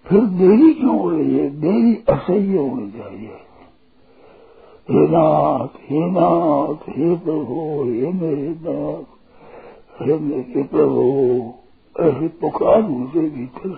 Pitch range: 145-190 Hz